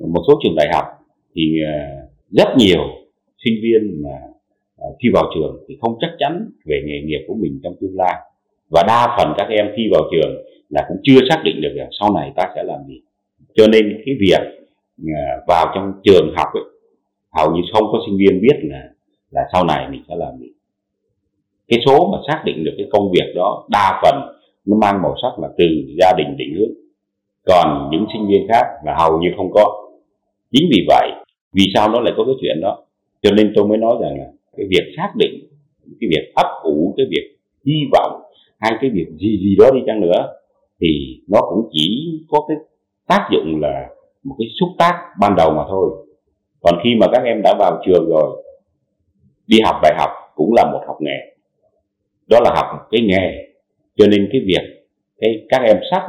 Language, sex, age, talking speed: Vietnamese, male, 30-49, 205 wpm